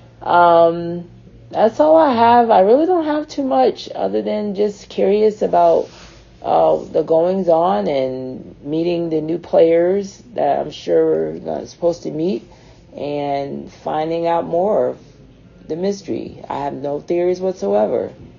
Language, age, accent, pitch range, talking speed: English, 40-59, American, 125-170 Hz, 145 wpm